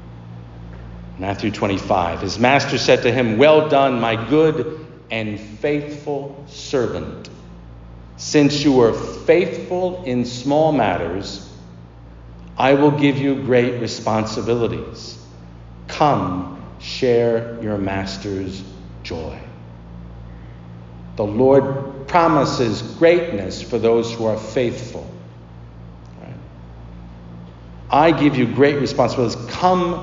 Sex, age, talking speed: male, 50-69, 95 wpm